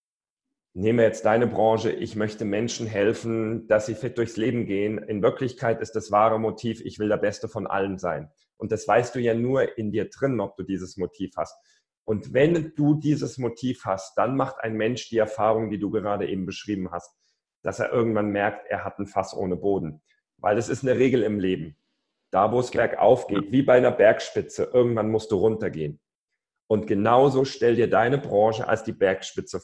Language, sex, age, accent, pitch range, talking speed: German, male, 40-59, German, 105-120 Hz, 200 wpm